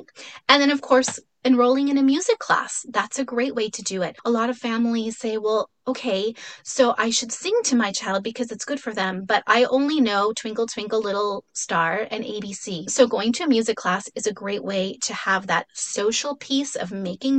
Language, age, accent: English, 30-49, American